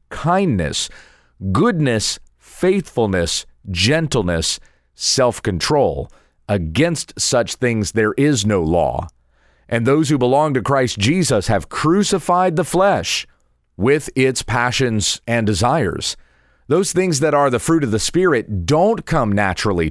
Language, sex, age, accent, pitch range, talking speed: English, male, 40-59, American, 100-145 Hz, 120 wpm